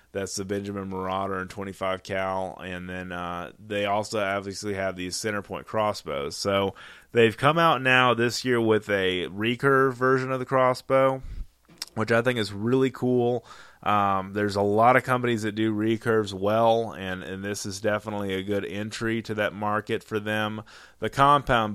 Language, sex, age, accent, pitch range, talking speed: English, male, 20-39, American, 95-110 Hz, 175 wpm